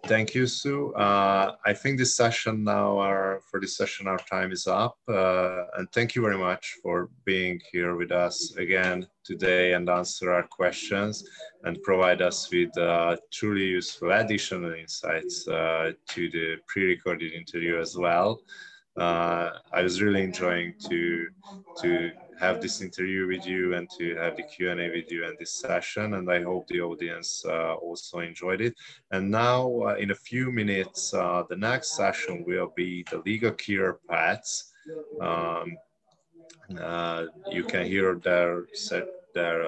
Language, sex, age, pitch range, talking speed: Hungarian, male, 20-39, 85-105 Hz, 160 wpm